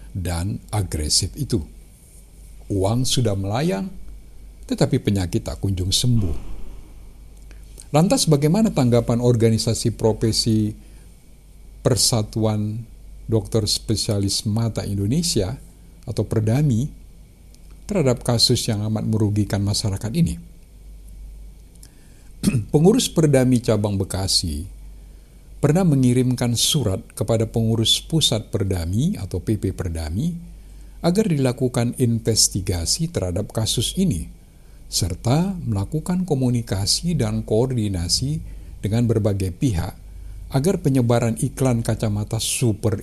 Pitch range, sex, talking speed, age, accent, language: 95-125 Hz, male, 90 wpm, 60-79, native, Indonesian